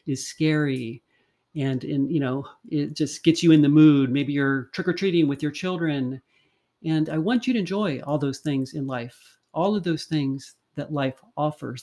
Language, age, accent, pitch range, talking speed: English, 40-59, American, 150-185 Hz, 200 wpm